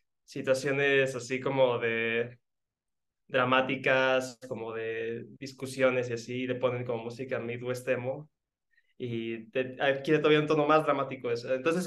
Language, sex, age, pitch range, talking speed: Spanish, male, 20-39, 130-155 Hz, 125 wpm